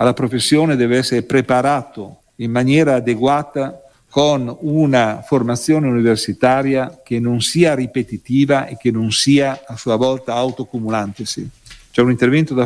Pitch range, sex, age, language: 110-135 Hz, male, 50-69, Italian